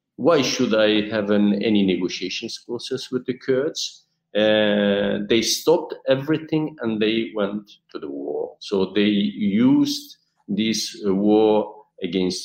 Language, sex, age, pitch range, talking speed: English, male, 50-69, 95-135 Hz, 135 wpm